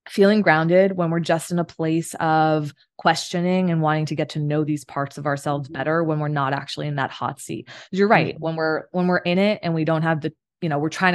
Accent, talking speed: American, 250 wpm